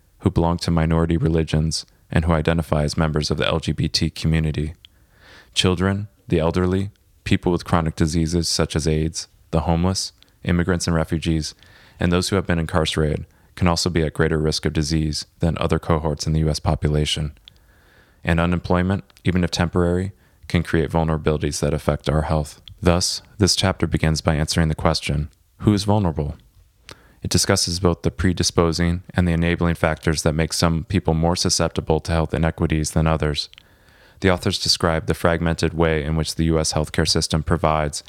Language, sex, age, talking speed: English, male, 30-49, 165 wpm